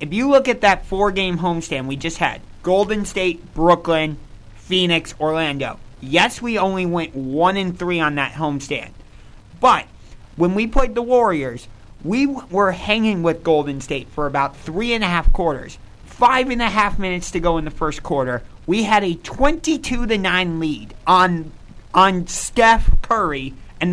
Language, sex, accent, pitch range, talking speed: English, male, American, 140-185 Hz, 170 wpm